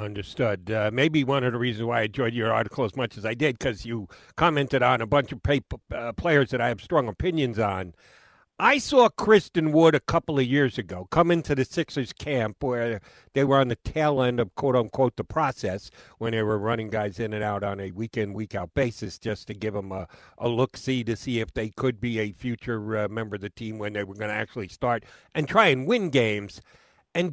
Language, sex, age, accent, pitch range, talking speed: English, male, 60-79, American, 110-155 Hz, 225 wpm